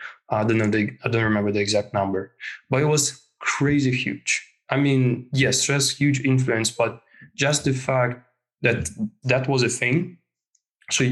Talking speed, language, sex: 165 wpm, English, male